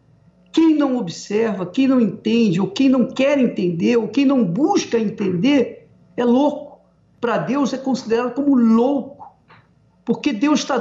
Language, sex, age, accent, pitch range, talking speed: Portuguese, male, 50-69, Brazilian, 205-280 Hz, 150 wpm